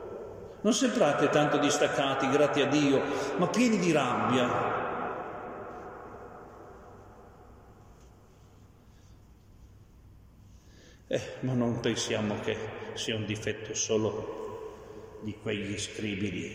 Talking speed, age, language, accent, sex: 85 wpm, 50-69, Italian, native, male